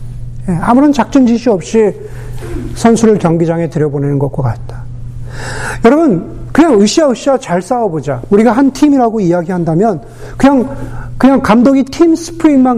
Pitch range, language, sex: 160-245 Hz, Korean, male